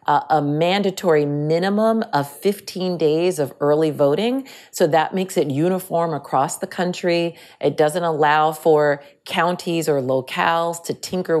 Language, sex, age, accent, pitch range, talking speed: English, female, 40-59, American, 150-185 Hz, 135 wpm